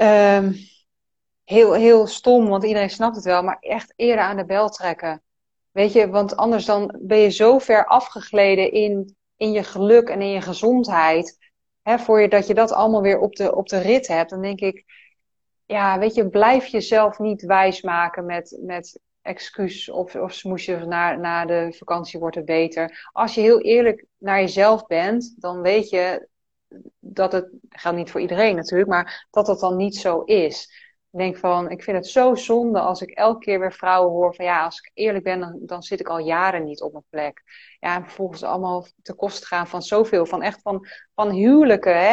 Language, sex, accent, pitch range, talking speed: Dutch, female, Dutch, 180-220 Hz, 200 wpm